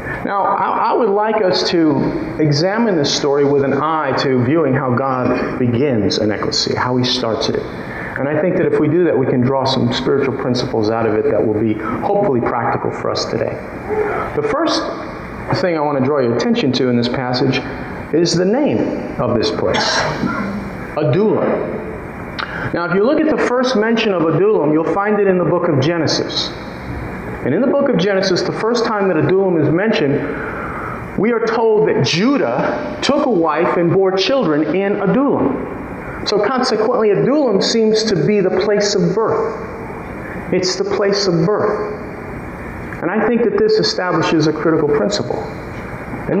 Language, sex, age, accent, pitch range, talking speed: English, male, 40-59, American, 145-215 Hz, 175 wpm